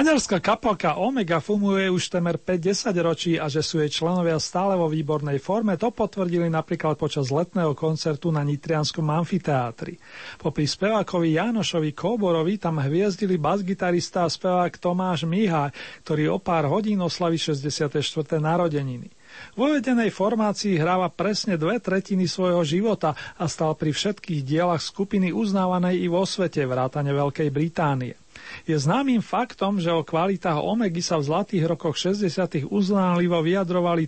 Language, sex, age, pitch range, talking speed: Slovak, male, 40-59, 160-195 Hz, 140 wpm